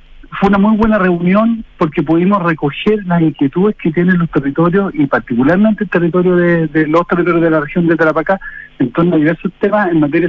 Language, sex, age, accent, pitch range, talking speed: Spanish, male, 50-69, Argentinian, 145-180 Hz, 200 wpm